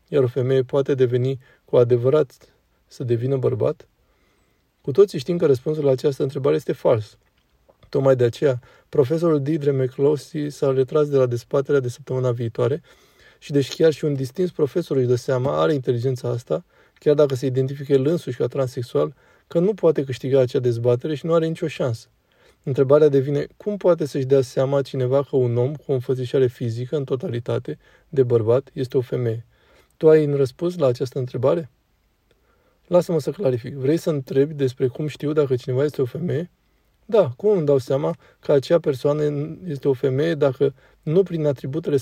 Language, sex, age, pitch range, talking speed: Romanian, male, 20-39, 130-155 Hz, 175 wpm